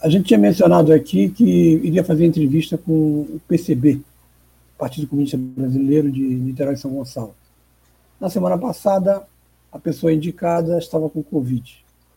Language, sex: Portuguese, male